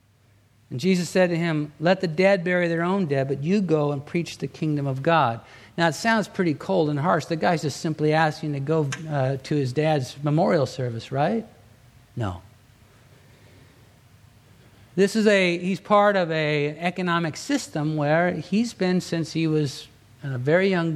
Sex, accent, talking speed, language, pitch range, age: male, American, 175 wpm, English, 130-175 Hz, 60-79